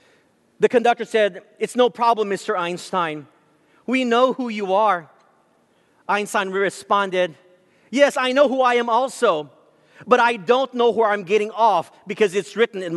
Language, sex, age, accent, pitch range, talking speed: English, male, 40-59, American, 210-265 Hz, 155 wpm